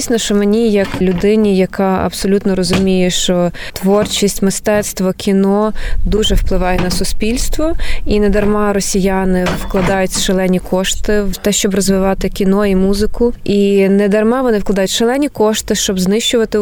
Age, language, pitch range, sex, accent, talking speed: 20-39, Ukrainian, 190-220 Hz, female, native, 130 wpm